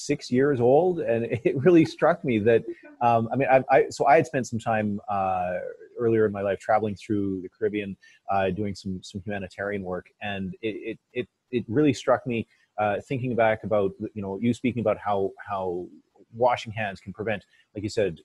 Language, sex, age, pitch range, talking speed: English, male, 30-49, 95-115 Hz, 195 wpm